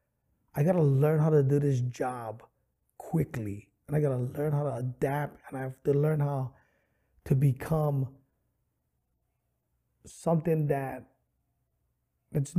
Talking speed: 130 wpm